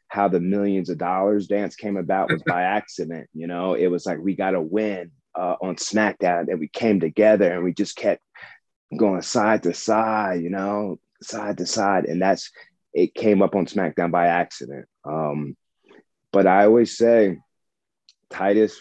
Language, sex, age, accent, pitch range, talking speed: English, male, 30-49, American, 85-105 Hz, 175 wpm